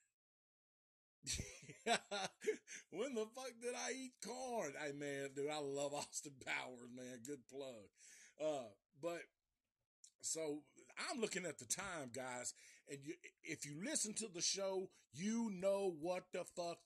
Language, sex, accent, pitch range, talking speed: English, male, American, 140-195 Hz, 140 wpm